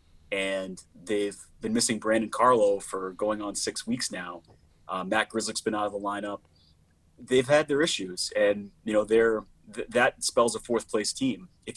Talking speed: 185 wpm